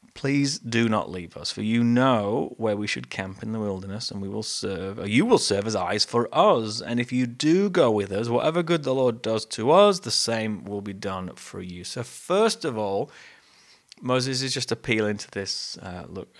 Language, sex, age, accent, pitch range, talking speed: English, male, 30-49, British, 100-125 Hz, 220 wpm